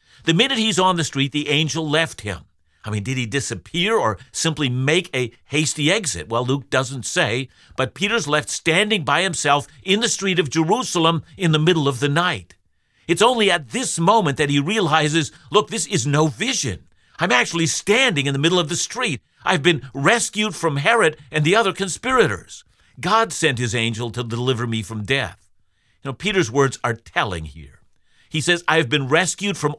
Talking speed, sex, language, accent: 195 wpm, male, English, American